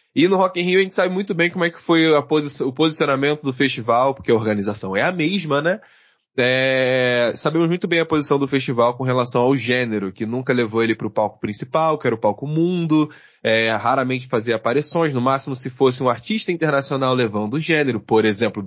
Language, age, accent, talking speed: Portuguese, 10-29, Brazilian, 220 wpm